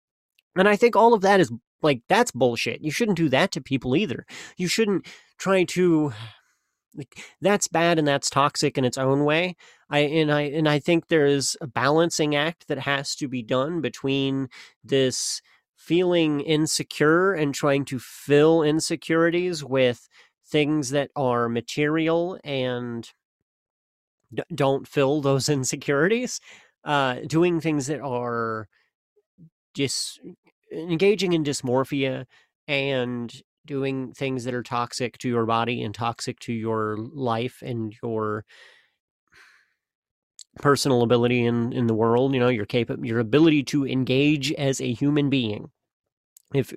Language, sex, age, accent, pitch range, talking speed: English, male, 30-49, American, 125-160 Hz, 140 wpm